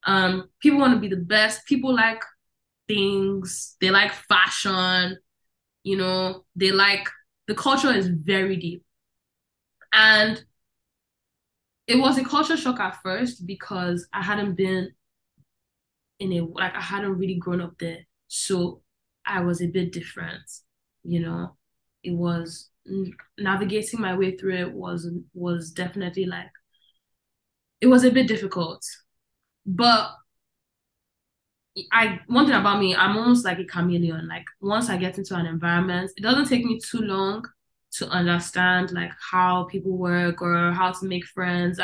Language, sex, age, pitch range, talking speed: English, female, 10-29, 175-205 Hz, 145 wpm